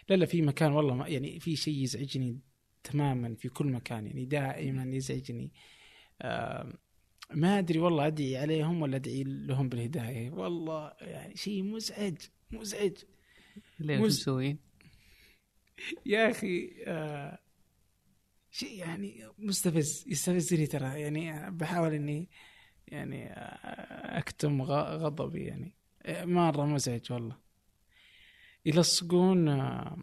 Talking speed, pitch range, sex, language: 105 wpm, 130-185 Hz, male, Arabic